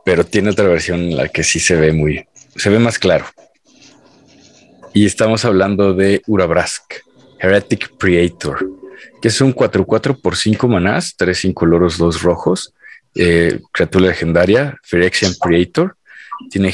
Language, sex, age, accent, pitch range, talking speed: Spanish, male, 40-59, Mexican, 90-115 Hz, 145 wpm